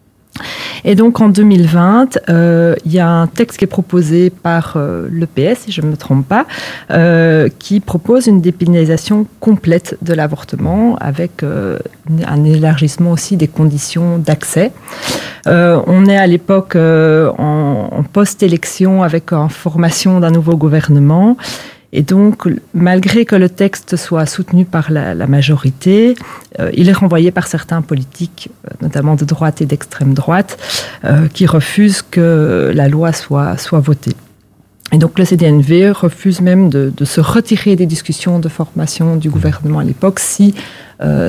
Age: 40-59